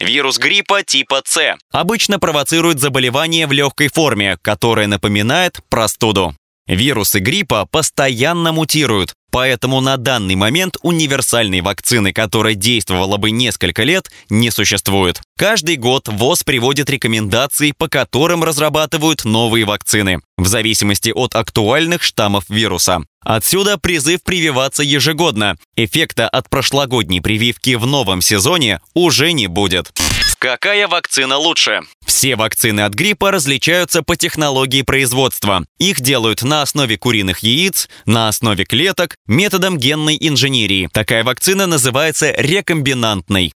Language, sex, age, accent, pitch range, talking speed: Russian, male, 20-39, native, 110-160 Hz, 120 wpm